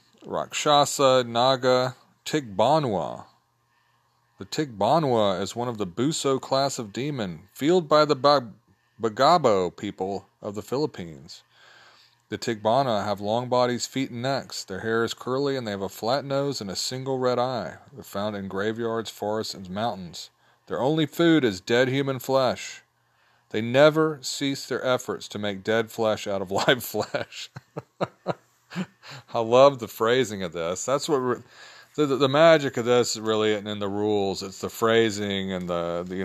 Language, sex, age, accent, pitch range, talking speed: English, male, 40-59, American, 100-130 Hz, 160 wpm